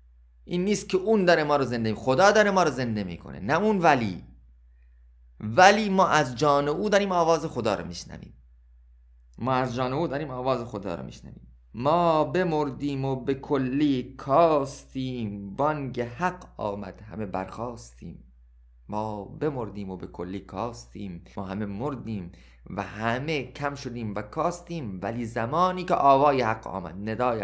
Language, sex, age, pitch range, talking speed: Persian, male, 30-49, 100-140 Hz, 150 wpm